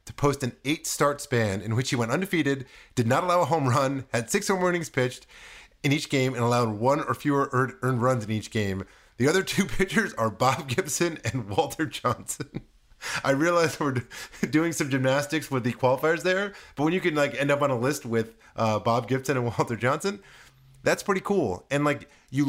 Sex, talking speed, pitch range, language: male, 205 wpm, 110-140 Hz, English